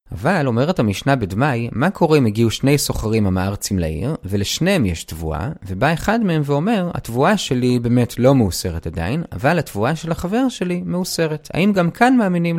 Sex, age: male, 30-49